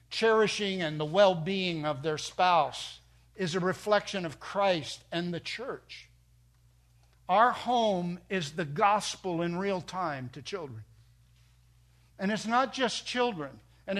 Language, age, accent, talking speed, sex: English, 60-79, American, 135 wpm, male